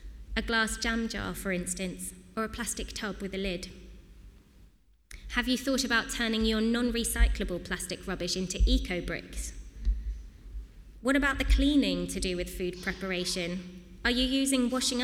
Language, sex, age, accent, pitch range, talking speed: English, female, 20-39, British, 180-230 Hz, 150 wpm